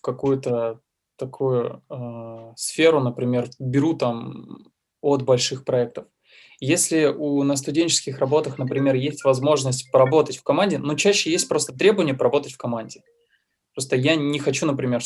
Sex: male